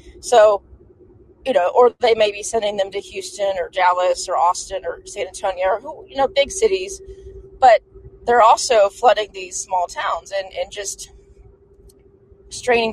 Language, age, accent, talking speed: English, 30-49, American, 160 wpm